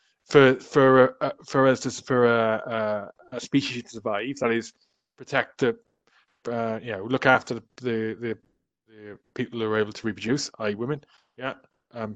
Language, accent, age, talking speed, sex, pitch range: English, British, 20-39, 180 wpm, male, 115-140 Hz